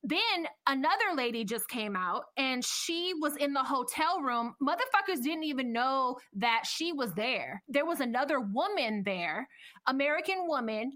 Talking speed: 155 wpm